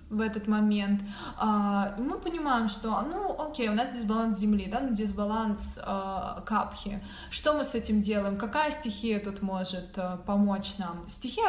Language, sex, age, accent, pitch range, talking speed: Russian, female, 20-39, native, 205-255 Hz, 140 wpm